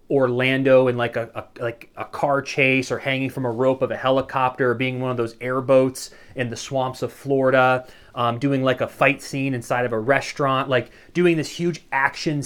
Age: 30-49